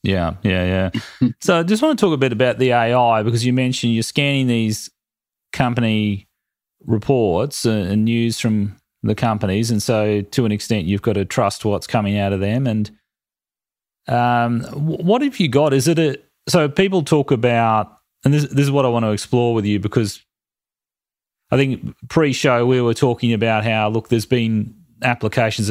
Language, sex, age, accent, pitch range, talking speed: English, male, 30-49, Australian, 110-130 Hz, 185 wpm